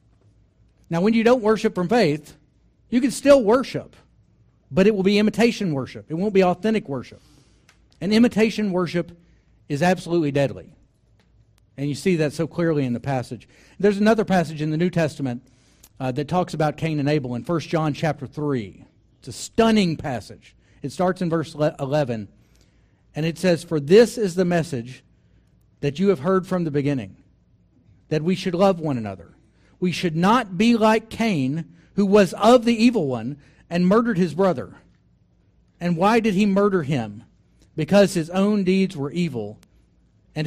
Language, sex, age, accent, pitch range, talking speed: English, male, 50-69, American, 125-185 Hz, 170 wpm